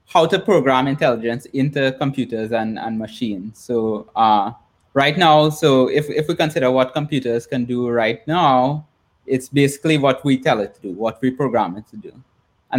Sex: male